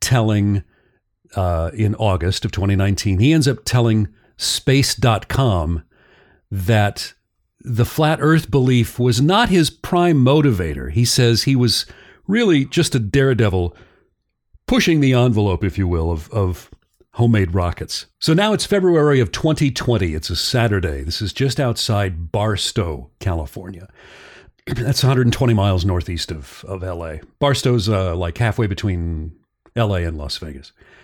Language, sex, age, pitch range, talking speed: English, male, 40-59, 95-130 Hz, 135 wpm